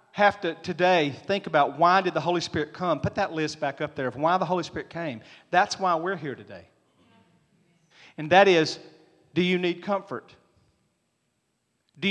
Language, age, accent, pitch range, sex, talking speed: English, 40-59, American, 140-180 Hz, male, 180 wpm